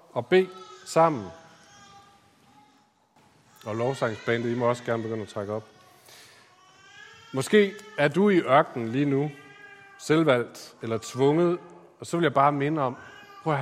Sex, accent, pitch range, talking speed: male, native, 105-145 Hz, 135 wpm